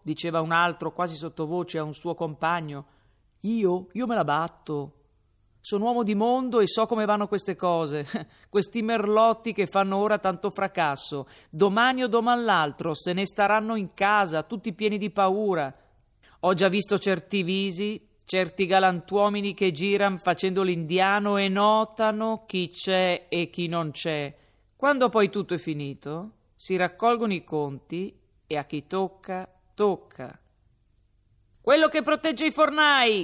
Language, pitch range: Italian, 160-220 Hz